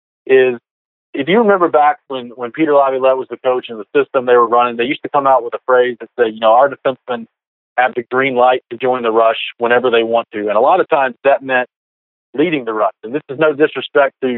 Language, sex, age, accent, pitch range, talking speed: English, male, 40-59, American, 120-150 Hz, 250 wpm